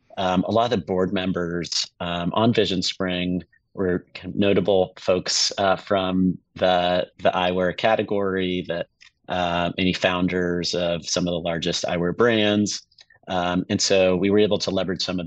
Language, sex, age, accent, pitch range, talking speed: English, male, 30-49, American, 85-95 Hz, 155 wpm